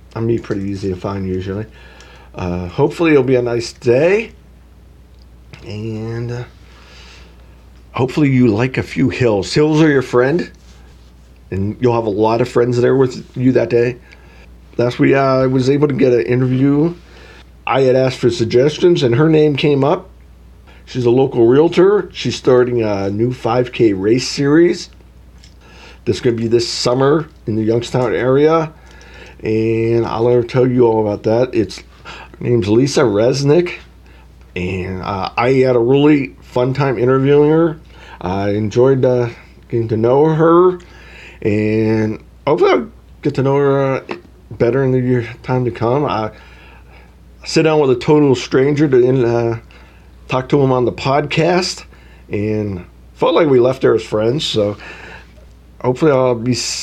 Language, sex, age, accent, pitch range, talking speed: English, male, 40-59, American, 90-130 Hz, 155 wpm